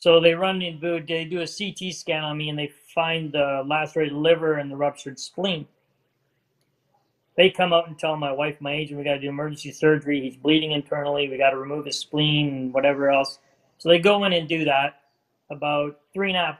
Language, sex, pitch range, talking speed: English, male, 140-170 Hz, 215 wpm